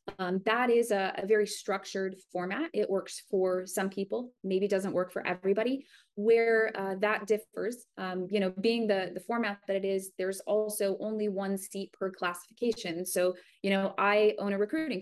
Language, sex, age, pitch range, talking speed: English, female, 20-39, 185-210 Hz, 185 wpm